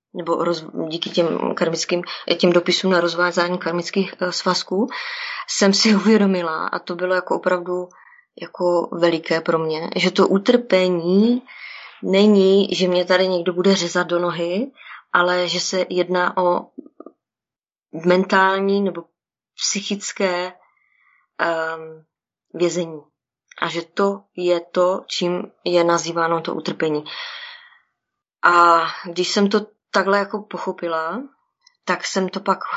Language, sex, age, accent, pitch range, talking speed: Czech, female, 20-39, native, 175-200 Hz, 115 wpm